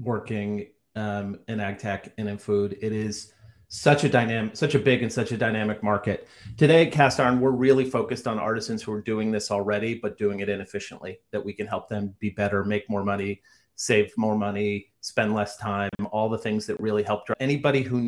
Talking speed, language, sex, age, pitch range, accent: 205 wpm, English, male, 30-49, 105-130 Hz, American